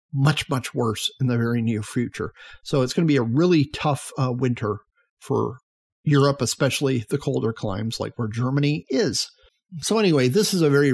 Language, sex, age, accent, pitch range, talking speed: English, male, 40-59, American, 120-150 Hz, 185 wpm